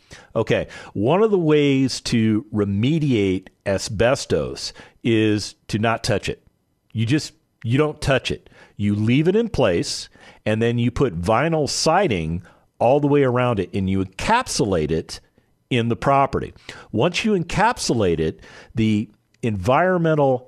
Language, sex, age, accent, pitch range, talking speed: English, male, 50-69, American, 110-150 Hz, 140 wpm